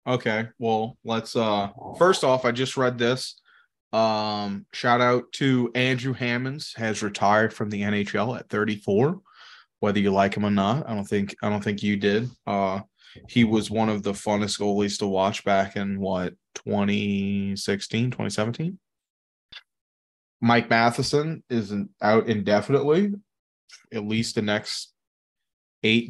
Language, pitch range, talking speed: English, 105-125 Hz, 145 wpm